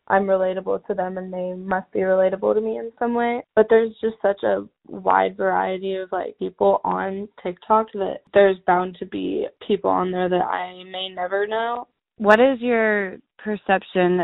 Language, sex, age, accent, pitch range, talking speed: English, female, 10-29, American, 180-220 Hz, 180 wpm